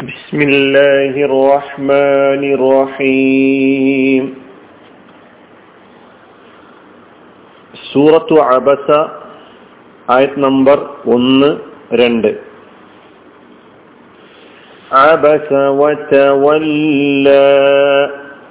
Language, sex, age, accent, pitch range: Malayalam, male, 40-59, native, 135-160 Hz